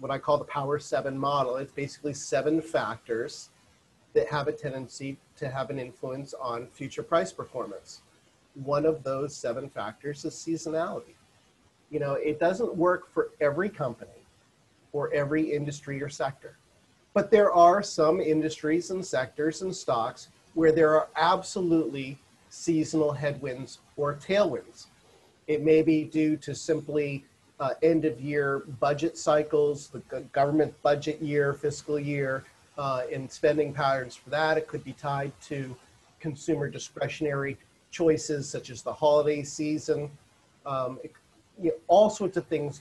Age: 40-59